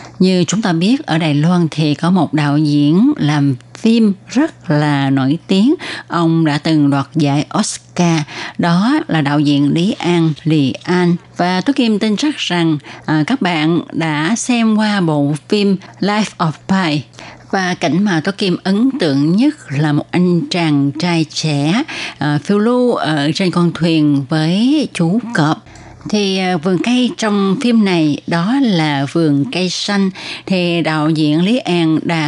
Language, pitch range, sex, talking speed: Vietnamese, 150-195 Hz, female, 165 wpm